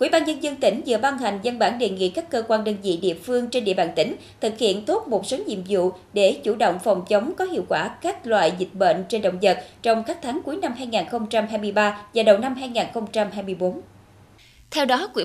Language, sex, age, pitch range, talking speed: Vietnamese, female, 20-39, 195-265 Hz, 230 wpm